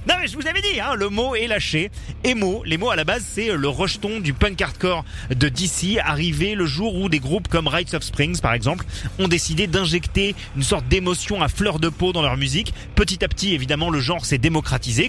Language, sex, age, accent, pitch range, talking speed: French, male, 30-49, French, 140-185 Hz, 230 wpm